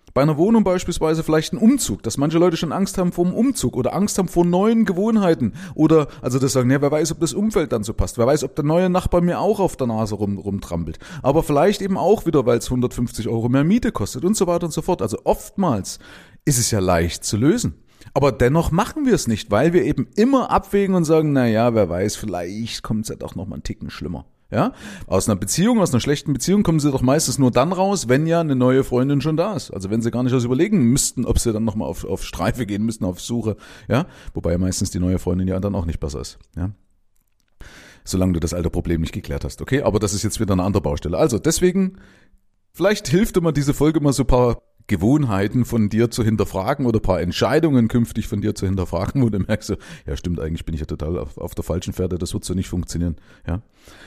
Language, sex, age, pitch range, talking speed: German, male, 30-49, 100-160 Hz, 240 wpm